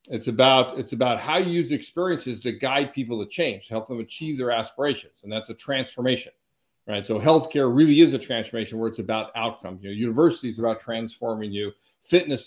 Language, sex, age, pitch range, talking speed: English, male, 50-69, 110-150 Hz, 195 wpm